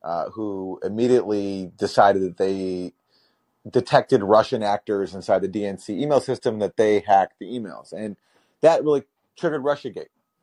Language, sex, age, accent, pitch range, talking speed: English, male, 30-49, American, 95-120 Hz, 140 wpm